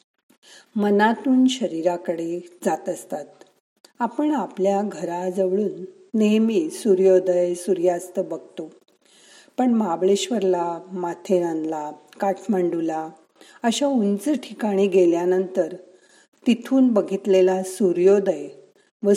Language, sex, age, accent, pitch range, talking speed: Marathi, female, 50-69, native, 180-225 Hz, 70 wpm